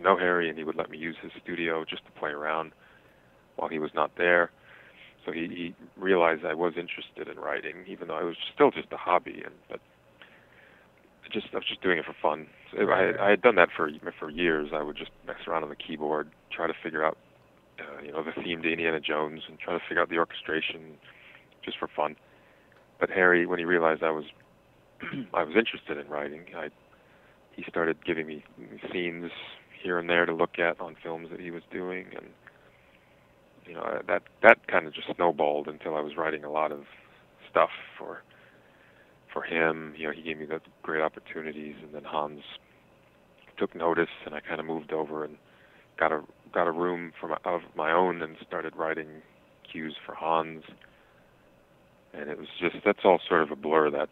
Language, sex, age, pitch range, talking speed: English, male, 30-49, 75-85 Hz, 200 wpm